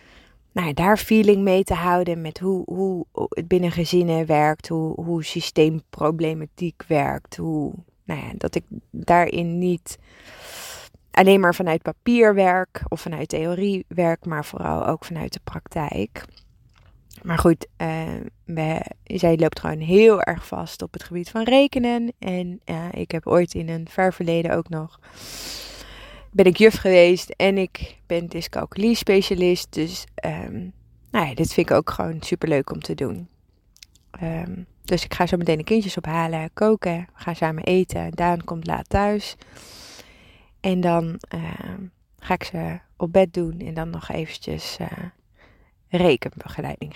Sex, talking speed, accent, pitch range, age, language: female, 155 wpm, Dutch, 160-185 Hz, 20-39, Dutch